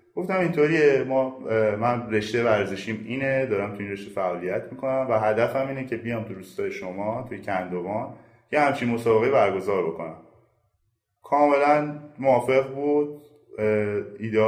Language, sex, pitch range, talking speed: Persian, male, 100-135 Hz, 135 wpm